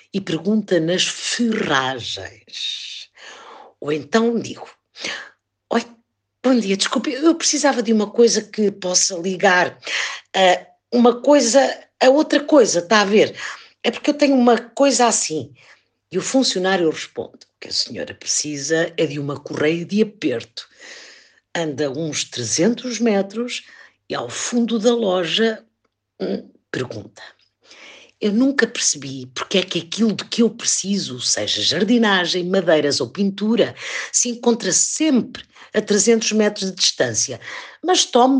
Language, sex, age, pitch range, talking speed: Portuguese, female, 50-69, 180-235 Hz, 135 wpm